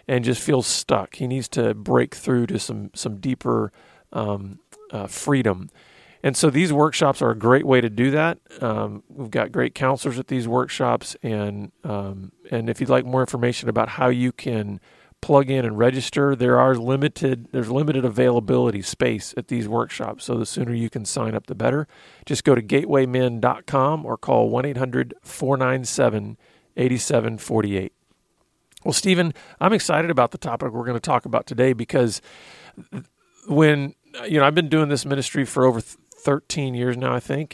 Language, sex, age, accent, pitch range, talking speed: English, male, 40-59, American, 115-140 Hz, 170 wpm